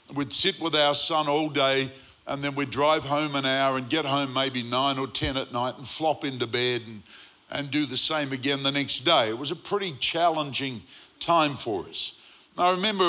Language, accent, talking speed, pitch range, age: Swedish, Australian, 215 wpm, 135-155 Hz, 50-69